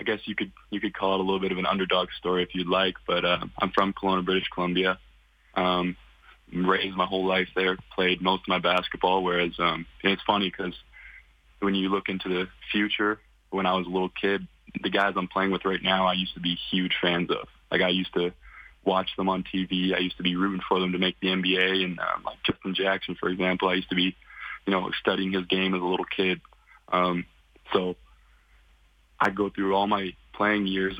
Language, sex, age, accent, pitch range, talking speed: English, male, 20-39, American, 90-95 Hz, 225 wpm